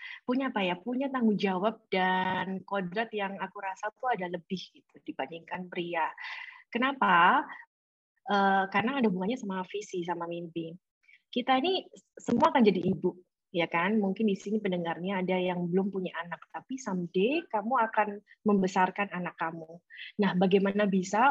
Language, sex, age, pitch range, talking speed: Indonesian, female, 20-39, 185-255 Hz, 150 wpm